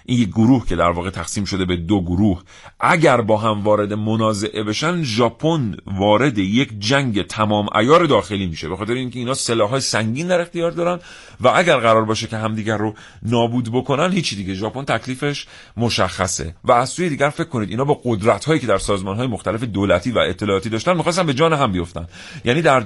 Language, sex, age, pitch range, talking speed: Persian, male, 40-59, 100-135 Hz, 185 wpm